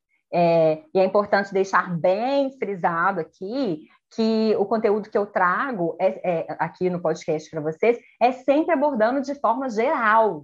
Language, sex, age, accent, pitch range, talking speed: Portuguese, female, 20-39, Brazilian, 190-255 Hz, 140 wpm